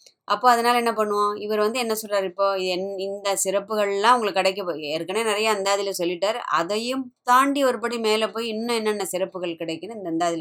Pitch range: 180-215 Hz